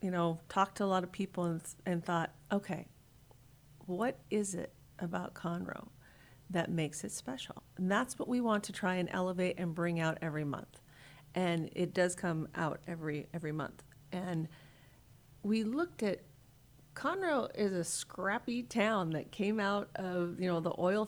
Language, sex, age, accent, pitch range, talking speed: English, female, 40-59, American, 160-205 Hz, 170 wpm